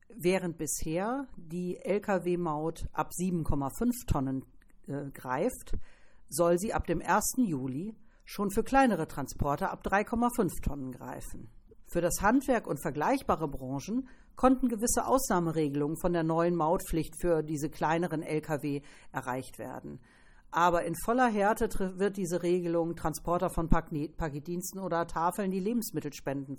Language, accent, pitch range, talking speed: German, German, 155-200 Hz, 125 wpm